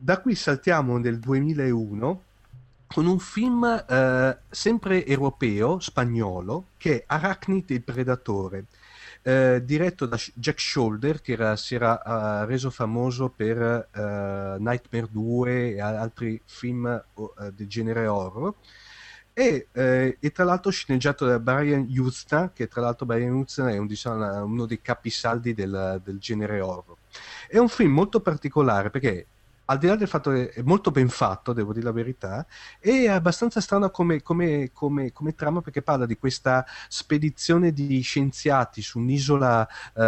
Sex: male